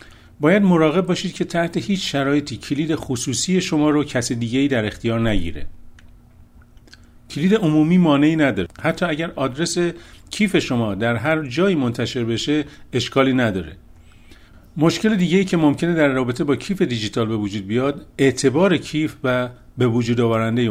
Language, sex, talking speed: Persian, male, 150 wpm